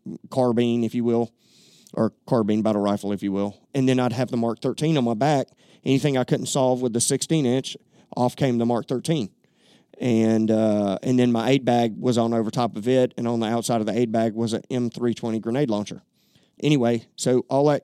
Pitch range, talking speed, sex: 115-130 Hz, 215 wpm, male